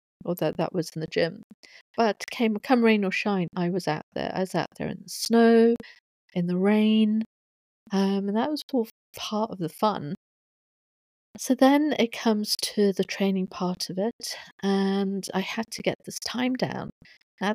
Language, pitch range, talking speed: English, 180-220 Hz, 190 wpm